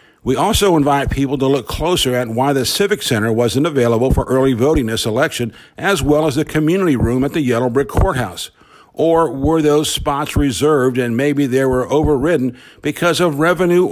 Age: 60-79